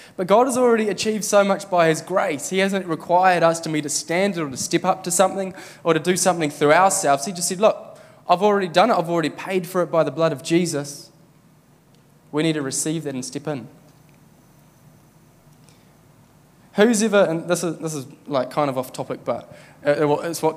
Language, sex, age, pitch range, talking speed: English, male, 20-39, 150-200 Hz, 205 wpm